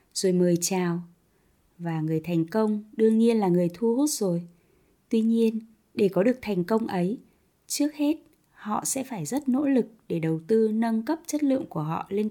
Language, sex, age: Vietnamese, female, 20-39